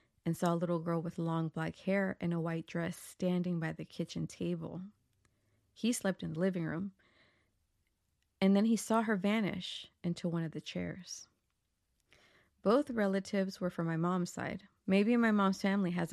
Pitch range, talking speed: 160-195 Hz, 175 wpm